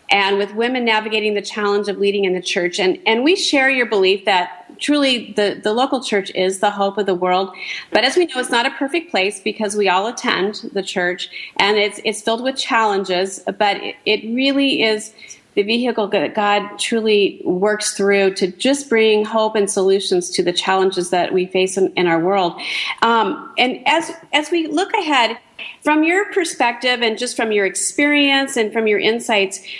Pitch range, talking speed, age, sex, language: 195-265 Hz, 195 wpm, 40-59, female, English